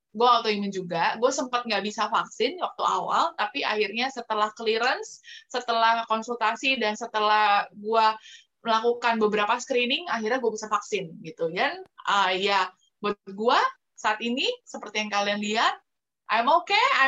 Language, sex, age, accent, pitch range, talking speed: Indonesian, female, 20-39, native, 215-345 Hz, 145 wpm